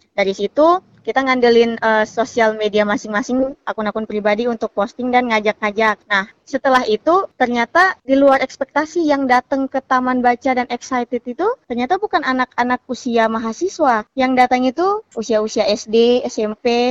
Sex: female